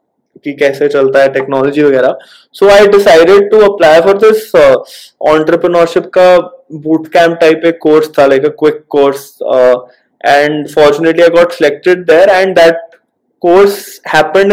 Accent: Indian